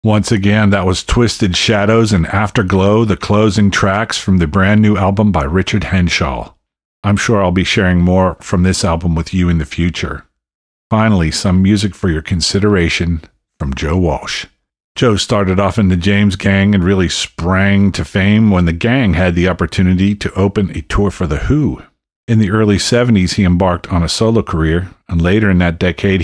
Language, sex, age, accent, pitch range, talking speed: English, male, 50-69, American, 90-105 Hz, 190 wpm